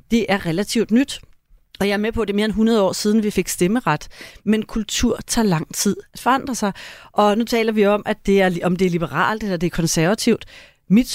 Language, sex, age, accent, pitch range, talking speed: Danish, female, 30-49, native, 195-240 Hz, 240 wpm